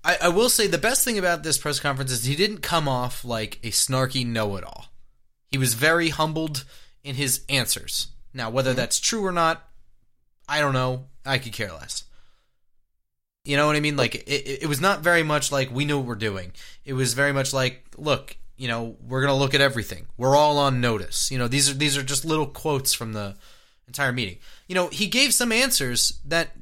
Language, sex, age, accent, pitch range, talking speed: English, male, 20-39, American, 120-155 Hz, 215 wpm